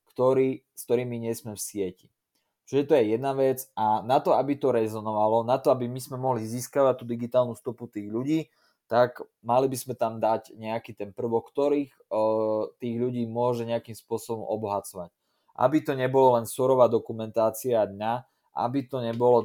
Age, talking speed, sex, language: 20-39, 175 wpm, male, Slovak